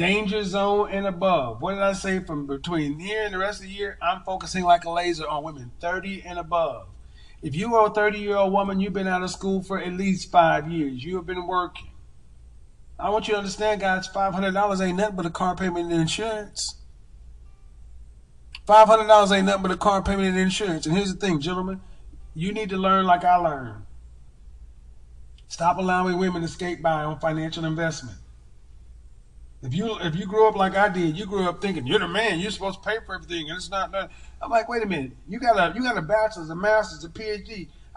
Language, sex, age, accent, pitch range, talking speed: English, male, 40-59, American, 155-205 Hz, 210 wpm